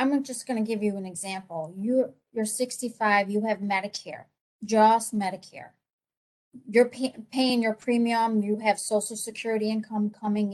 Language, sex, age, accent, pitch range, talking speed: English, female, 40-59, American, 195-230 Hz, 140 wpm